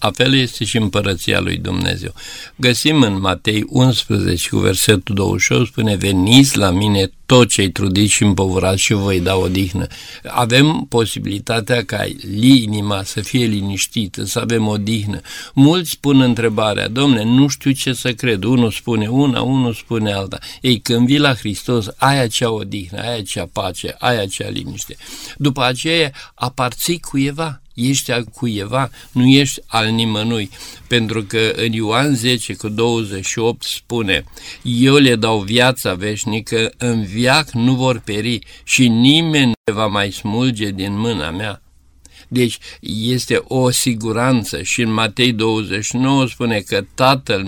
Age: 60-79